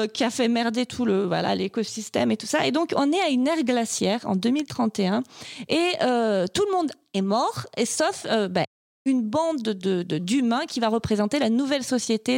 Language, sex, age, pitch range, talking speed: French, female, 30-49, 220-300 Hz, 210 wpm